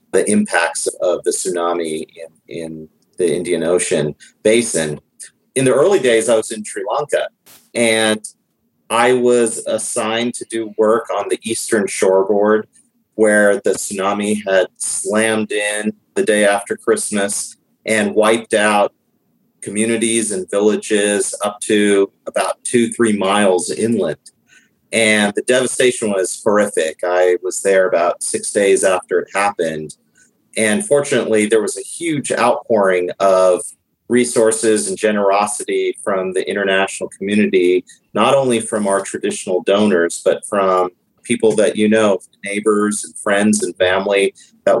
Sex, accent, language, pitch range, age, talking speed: male, American, English, 100-120 Hz, 40-59, 135 wpm